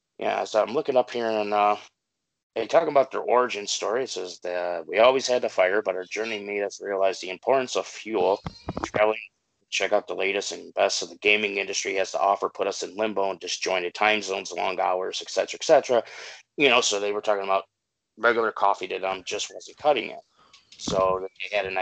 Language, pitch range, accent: English, 95-110 Hz, American